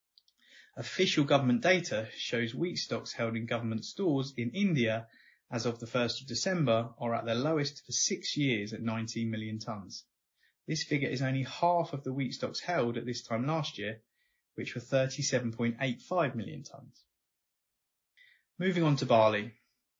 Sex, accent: male, British